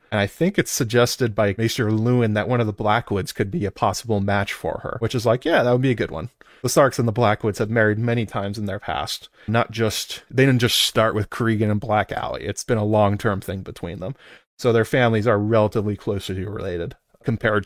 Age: 30-49